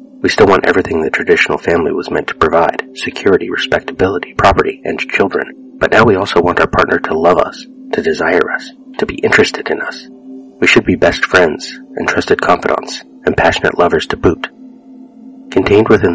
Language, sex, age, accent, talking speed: English, male, 30-49, American, 180 wpm